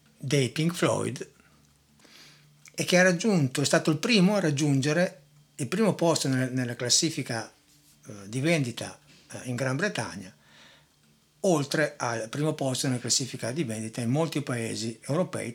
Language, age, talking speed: Italian, 60-79, 135 wpm